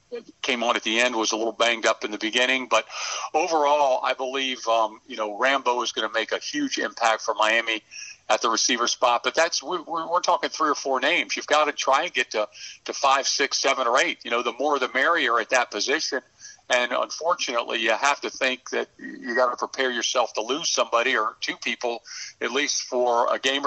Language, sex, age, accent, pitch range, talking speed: English, male, 50-69, American, 120-145 Hz, 225 wpm